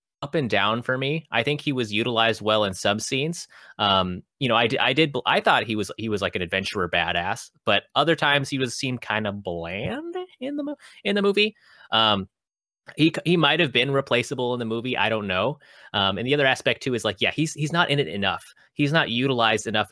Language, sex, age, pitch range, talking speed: English, male, 30-49, 100-140 Hz, 230 wpm